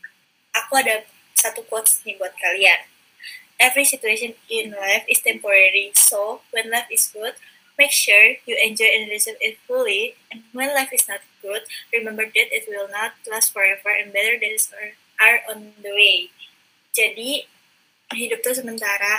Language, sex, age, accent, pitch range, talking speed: Indonesian, female, 20-39, native, 215-250 Hz, 155 wpm